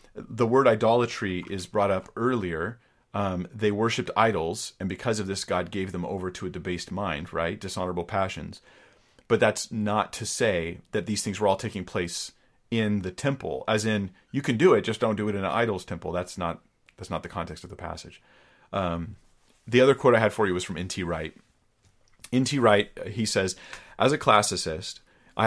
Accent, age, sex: American, 40-59, male